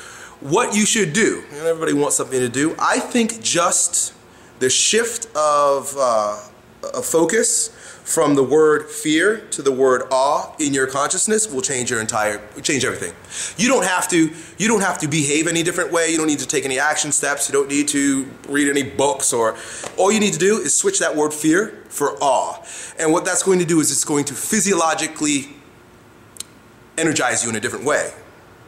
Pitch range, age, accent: 140-220 Hz, 30-49, American